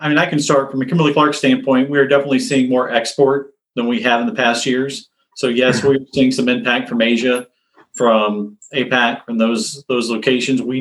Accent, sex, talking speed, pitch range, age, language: American, male, 205 wpm, 125-145 Hz, 40-59, English